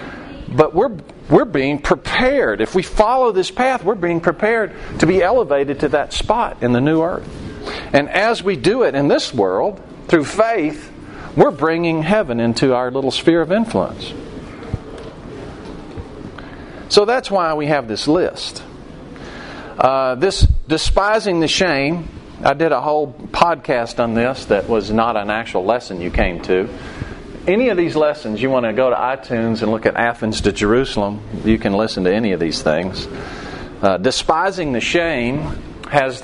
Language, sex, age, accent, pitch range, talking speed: English, male, 40-59, American, 115-160 Hz, 165 wpm